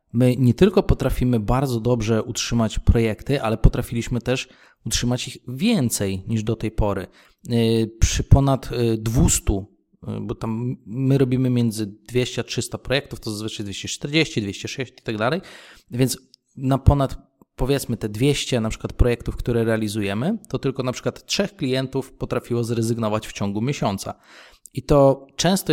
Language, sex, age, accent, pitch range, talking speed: Polish, male, 20-39, native, 115-135 Hz, 140 wpm